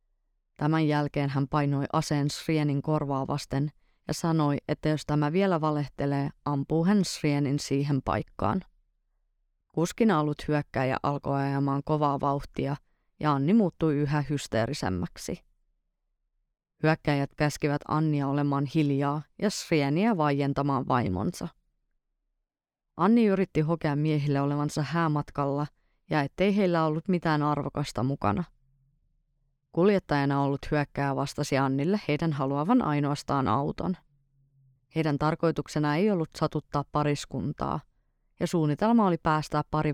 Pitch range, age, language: 140-155 Hz, 30-49, Finnish